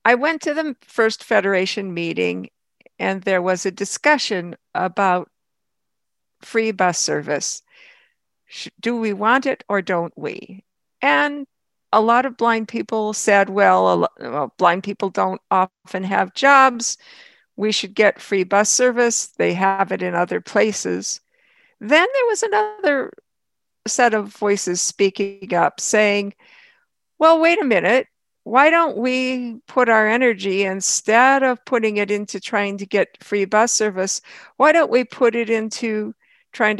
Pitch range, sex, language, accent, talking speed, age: 195-250 Hz, female, English, American, 145 wpm, 50-69